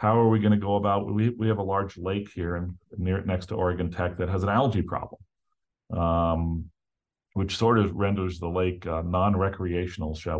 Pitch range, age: 90-110 Hz, 40-59